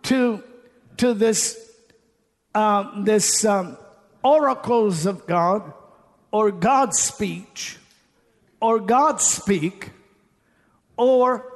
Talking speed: 85 wpm